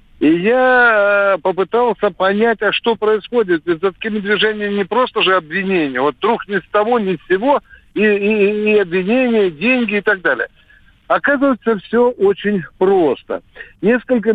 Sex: male